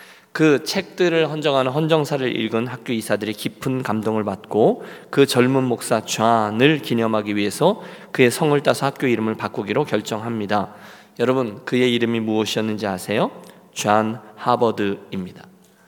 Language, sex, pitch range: Korean, male, 110-140 Hz